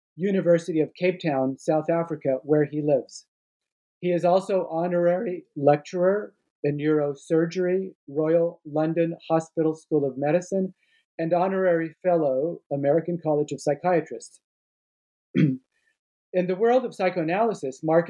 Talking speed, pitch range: 115 wpm, 150-175 Hz